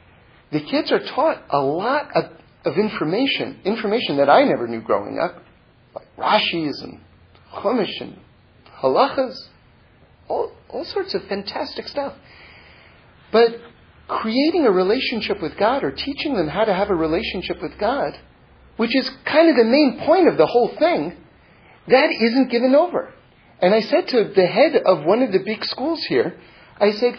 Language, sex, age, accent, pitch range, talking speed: English, male, 40-59, American, 210-290 Hz, 165 wpm